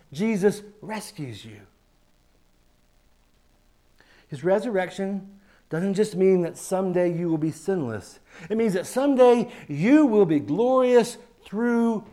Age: 60-79